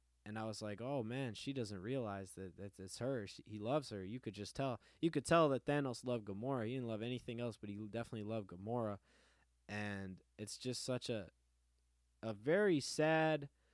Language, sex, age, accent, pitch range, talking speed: English, male, 20-39, American, 85-120 Hz, 190 wpm